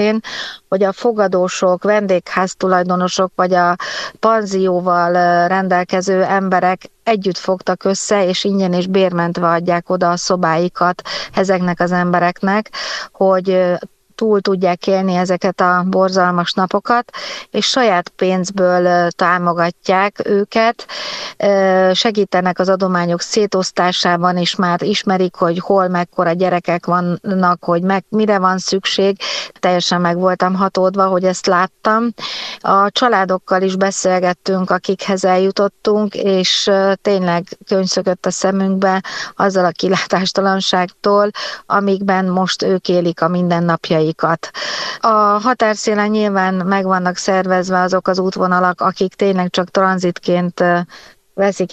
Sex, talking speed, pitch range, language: female, 110 wpm, 180-195 Hz, Hungarian